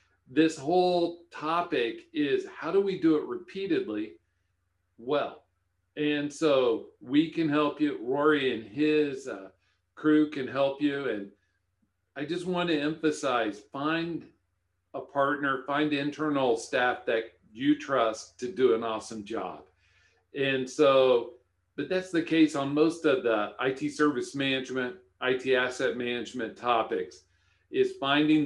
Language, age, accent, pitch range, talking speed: English, 50-69, American, 125-155 Hz, 135 wpm